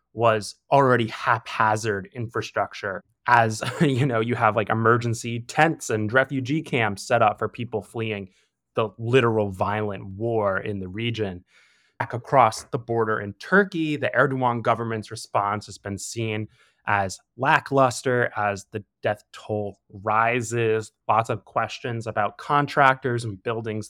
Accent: American